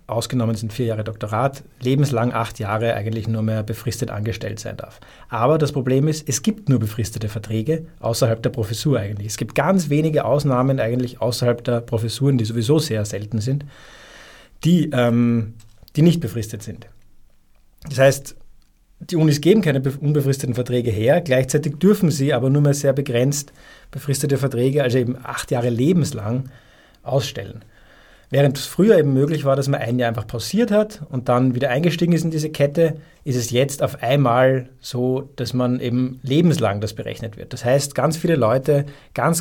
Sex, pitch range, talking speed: male, 115-145 Hz, 170 wpm